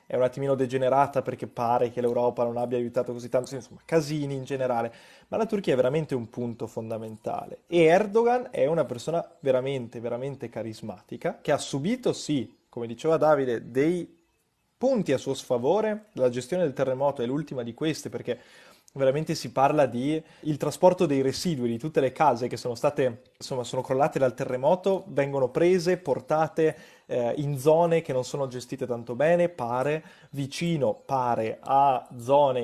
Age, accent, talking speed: 20-39, native, 165 wpm